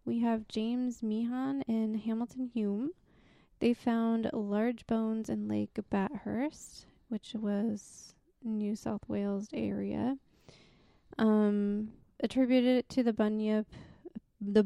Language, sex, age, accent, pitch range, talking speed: English, female, 20-39, American, 215-250 Hz, 105 wpm